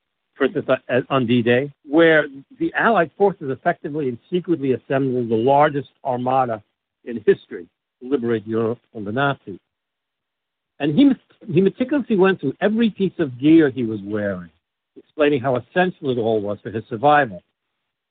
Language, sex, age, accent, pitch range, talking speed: English, male, 60-79, American, 125-165 Hz, 145 wpm